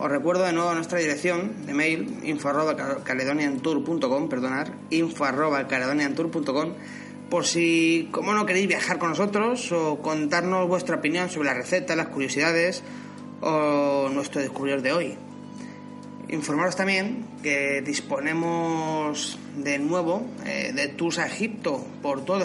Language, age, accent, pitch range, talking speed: Spanish, 30-49, Spanish, 150-215 Hz, 135 wpm